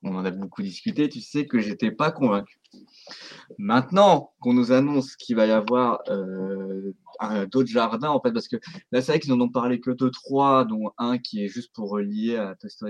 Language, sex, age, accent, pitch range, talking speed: French, male, 20-39, French, 110-175 Hz, 215 wpm